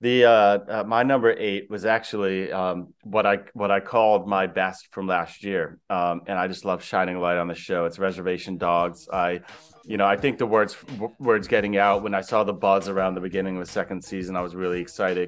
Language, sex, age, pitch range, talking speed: English, male, 30-49, 90-100 Hz, 230 wpm